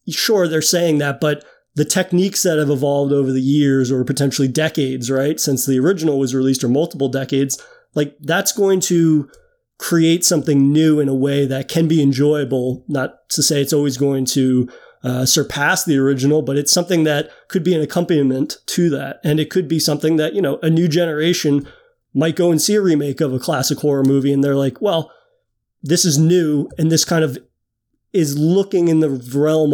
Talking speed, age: 200 wpm, 30-49